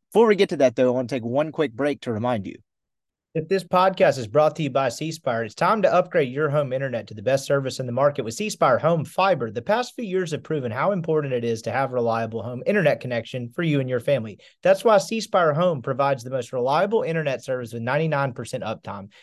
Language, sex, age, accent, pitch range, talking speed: English, male, 30-49, American, 125-185 Hz, 250 wpm